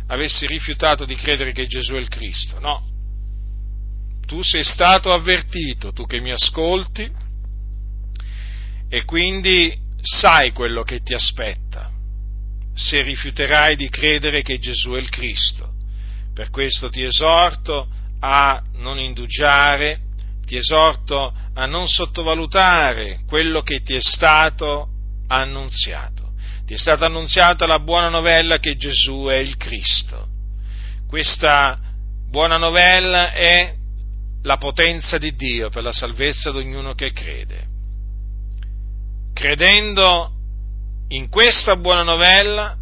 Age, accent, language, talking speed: 40-59, native, Italian, 115 wpm